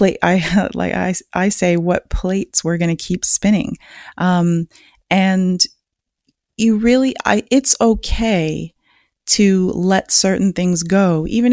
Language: English